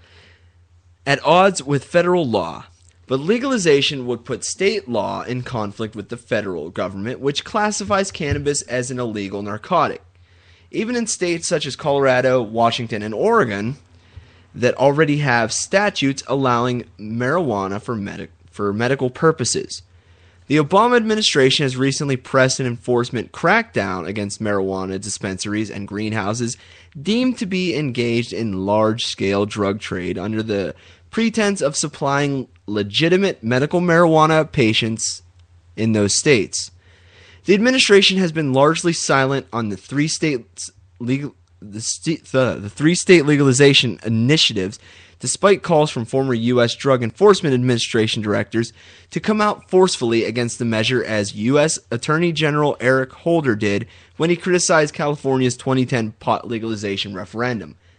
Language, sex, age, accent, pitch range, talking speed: English, male, 30-49, American, 100-145 Hz, 130 wpm